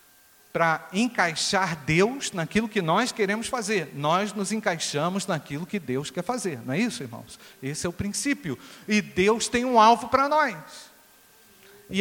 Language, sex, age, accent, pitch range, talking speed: Portuguese, male, 50-69, Brazilian, 145-215 Hz, 160 wpm